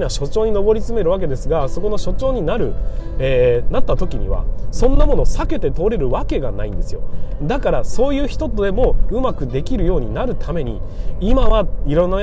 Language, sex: Japanese, male